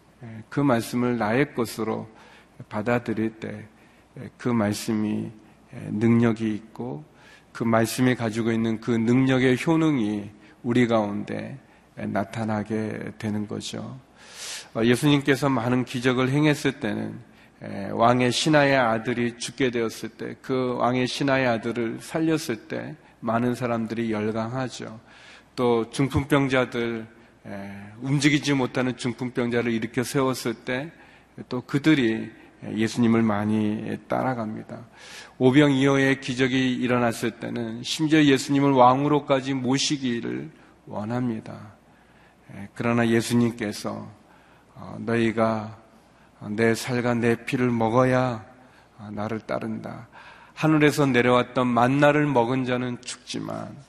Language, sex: Korean, male